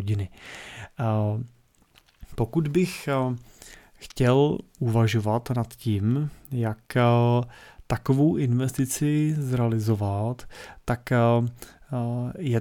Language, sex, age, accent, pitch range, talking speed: Czech, male, 30-49, native, 115-125 Hz, 60 wpm